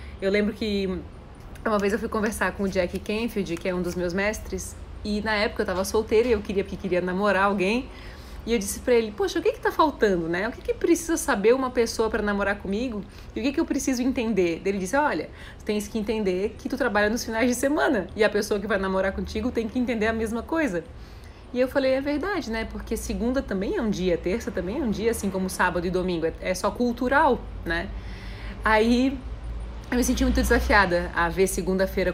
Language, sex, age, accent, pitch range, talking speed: Portuguese, female, 20-39, Brazilian, 195-245 Hz, 230 wpm